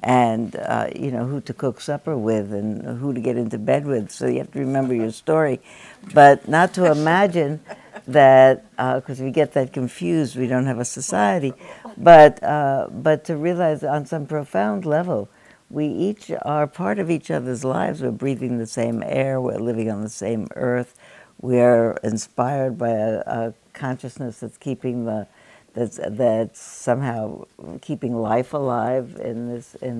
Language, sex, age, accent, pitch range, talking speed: English, female, 60-79, American, 120-145 Hz, 175 wpm